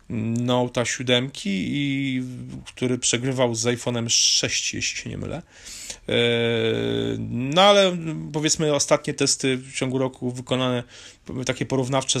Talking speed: 110 wpm